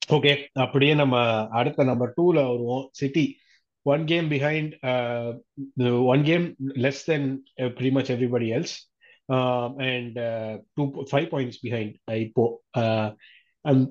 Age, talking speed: 30-49, 145 wpm